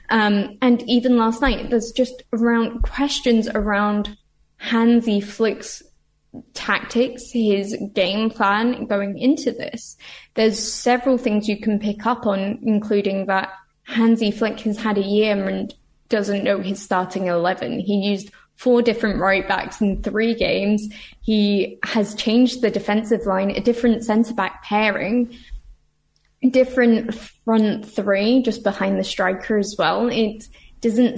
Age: 10-29